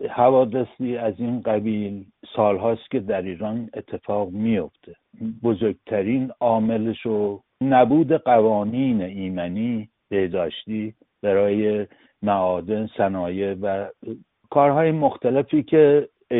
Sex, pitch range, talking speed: male, 105-130 Hz, 90 wpm